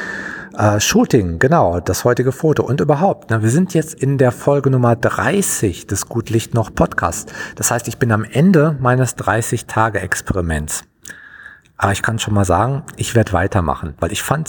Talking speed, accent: 170 wpm, German